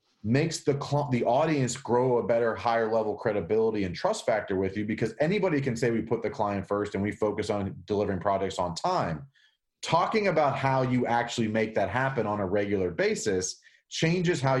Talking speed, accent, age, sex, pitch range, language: 195 wpm, American, 30-49, male, 110-155 Hz, English